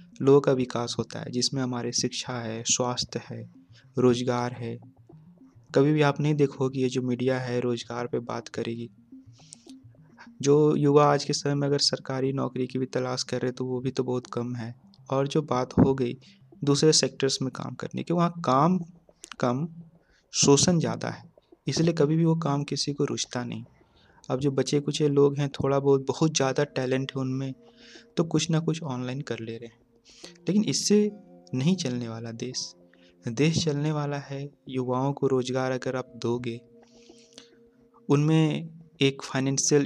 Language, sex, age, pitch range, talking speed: Hindi, male, 30-49, 125-155 Hz, 170 wpm